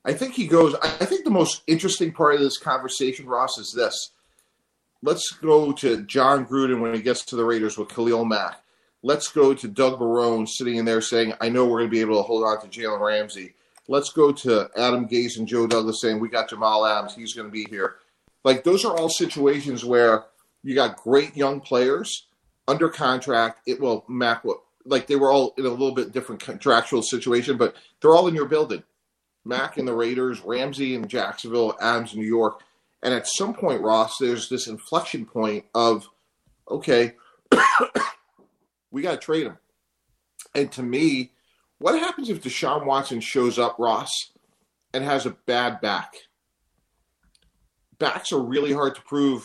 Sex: male